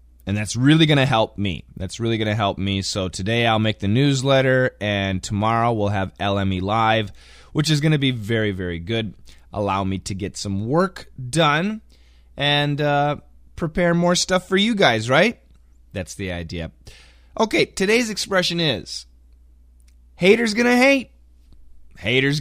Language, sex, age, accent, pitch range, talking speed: English, male, 30-49, American, 95-155 Hz, 165 wpm